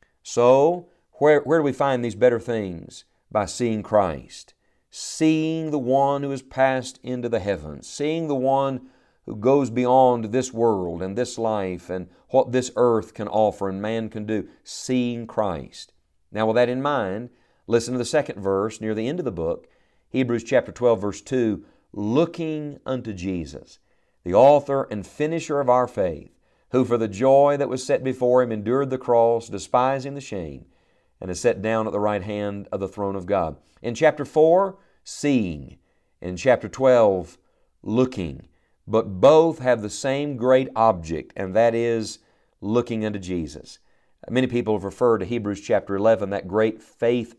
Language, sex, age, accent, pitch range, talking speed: English, male, 50-69, American, 105-130 Hz, 170 wpm